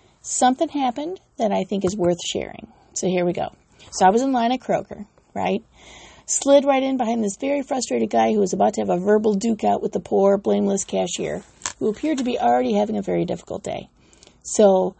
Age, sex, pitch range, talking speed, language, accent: 40-59, female, 205-280 Hz, 210 wpm, English, American